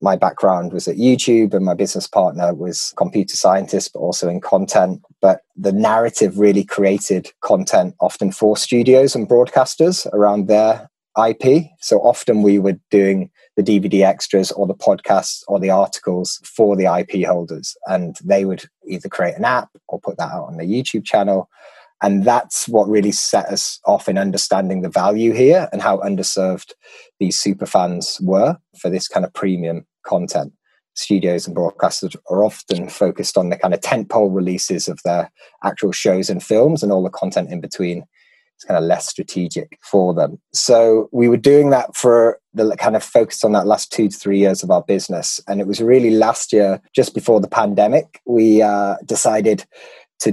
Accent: British